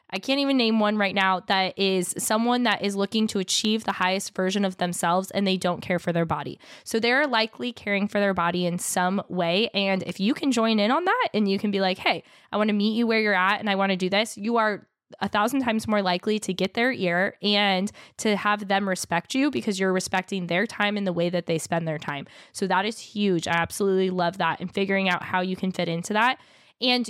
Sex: female